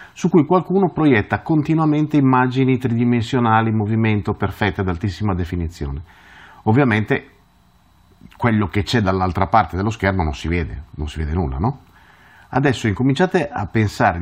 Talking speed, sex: 140 wpm, male